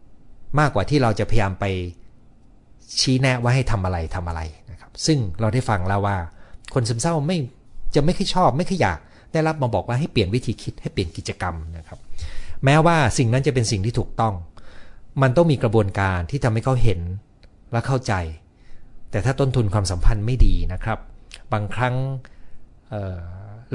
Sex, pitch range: male, 100-130 Hz